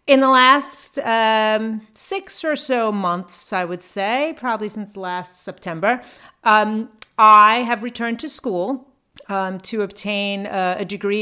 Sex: female